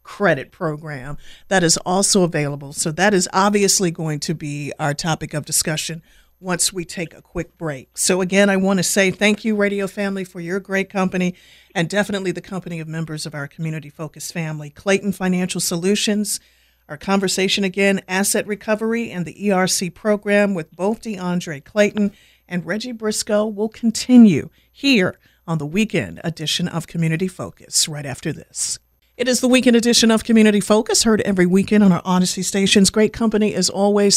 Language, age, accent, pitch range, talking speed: English, 50-69, American, 170-210 Hz, 175 wpm